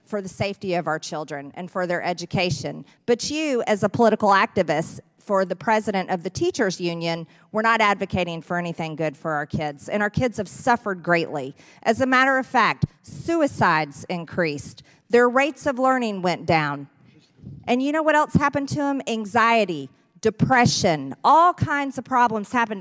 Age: 40-59